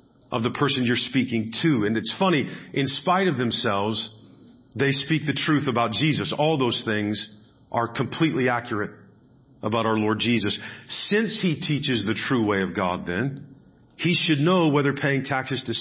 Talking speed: 170 wpm